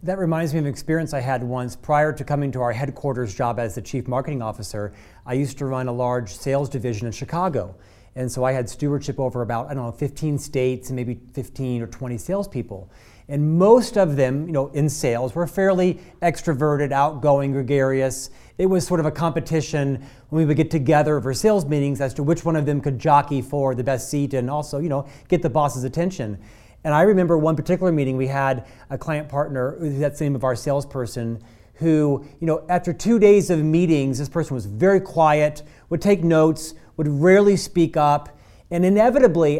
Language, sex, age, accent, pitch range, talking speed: English, male, 40-59, American, 130-175 Hz, 205 wpm